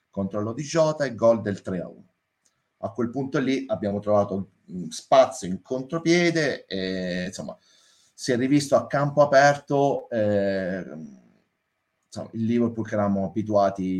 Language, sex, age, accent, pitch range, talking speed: Italian, male, 30-49, native, 100-135 Hz, 135 wpm